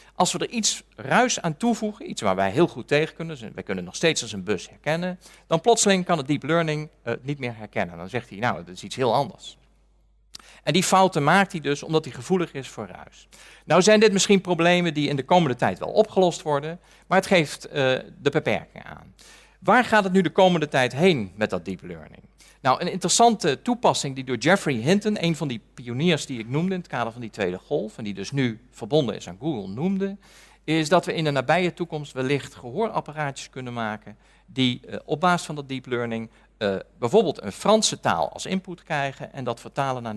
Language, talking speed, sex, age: Dutch, 215 wpm, male, 40-59